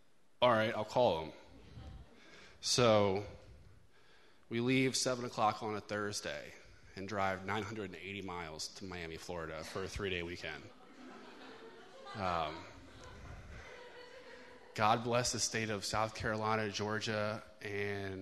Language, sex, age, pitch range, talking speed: English, male, 20-39, 95-110 Hz, 110 wpm